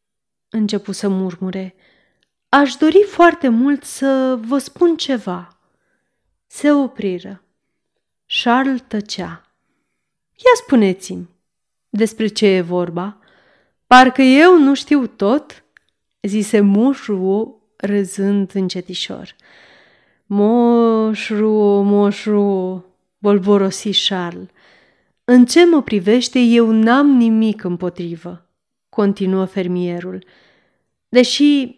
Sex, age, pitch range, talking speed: female, 30-49, 195-260 Hz, 85 wpm